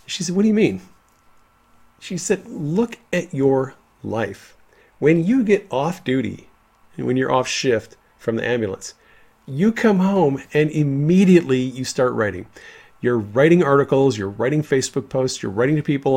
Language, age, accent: English, 40-59, American